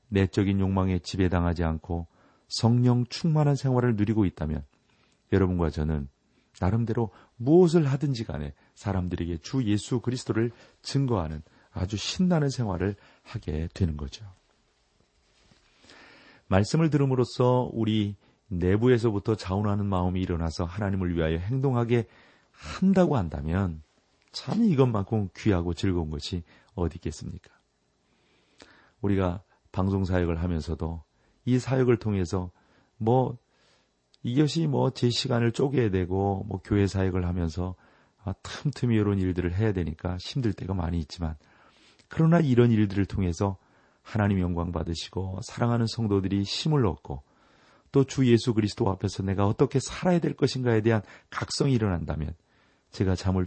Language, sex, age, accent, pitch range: Korean, male, 40-59, native, 90-120 Hz